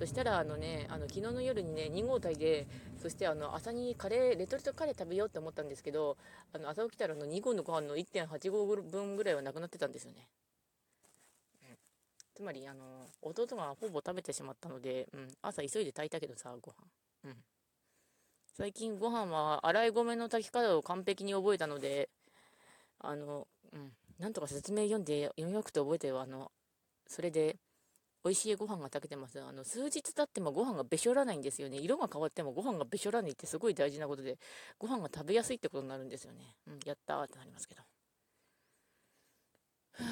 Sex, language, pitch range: female, Japanese, 145-210 Hz